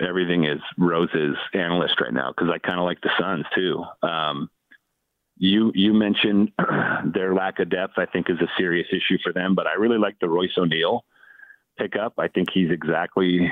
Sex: male